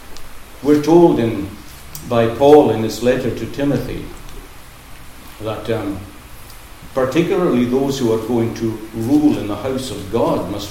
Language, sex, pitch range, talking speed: English, male, 95-125 Hz, 140 wpm